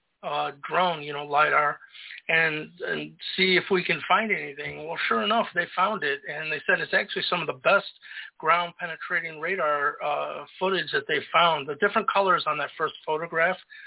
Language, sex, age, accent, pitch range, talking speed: English, male, 50-69, American, 155-200 Hz, 185 wpm